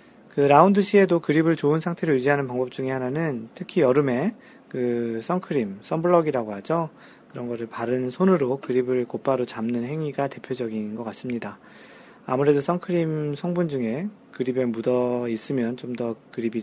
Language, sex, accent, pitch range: Korean, male, native, 120-155 Hz